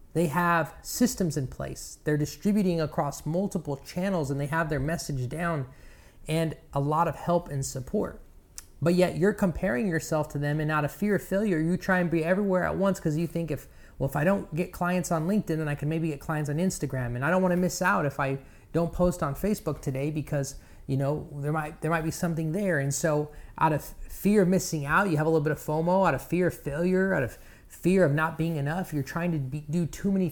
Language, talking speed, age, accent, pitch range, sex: English, 240 wpm, 30-49, American, 145-175 Hz, male